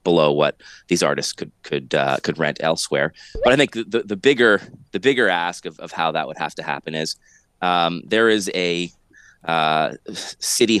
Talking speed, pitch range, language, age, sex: 190 wpm, 85-105 Hz, English, 30-49, male